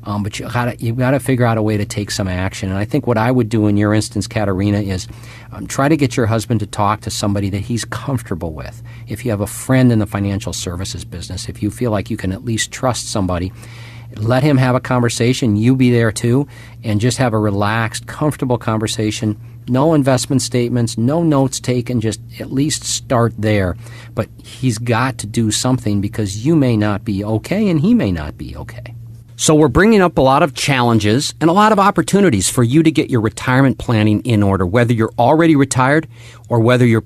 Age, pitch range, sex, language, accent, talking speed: 50-69, 105-130 Hz, male, English, American, 215 wpm